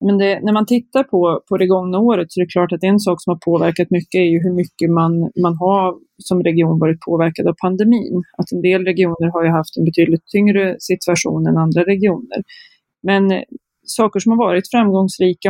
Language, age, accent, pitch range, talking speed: Swedish, 30-49, native, 170-190 Hz, 210 wpm